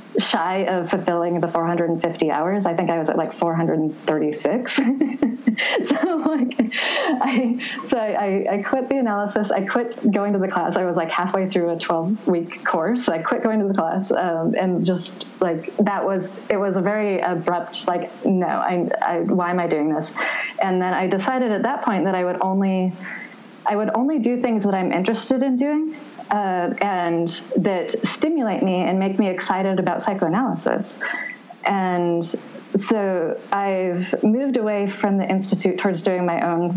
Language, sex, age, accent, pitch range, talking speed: English, female, 20-39, American, 175-220 Hz, 175 wpm